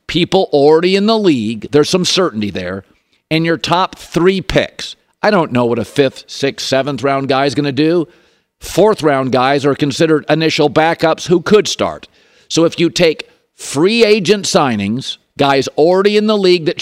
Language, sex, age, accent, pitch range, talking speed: English, male, 50-69, American, 135-175 Hz, 175 wpm